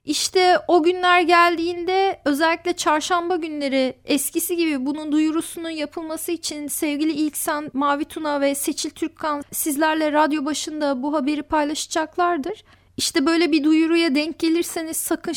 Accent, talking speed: native, 130 wpm